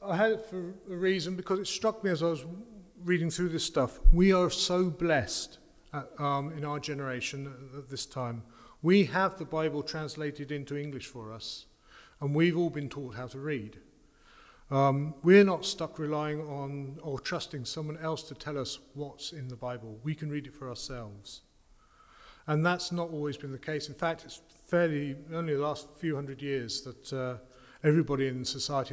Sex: male